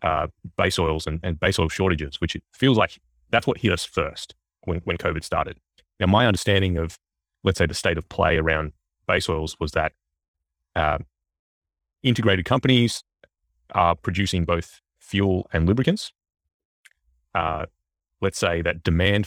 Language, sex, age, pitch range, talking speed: English, male, 30-49, 80-100 Hz, 155 wpm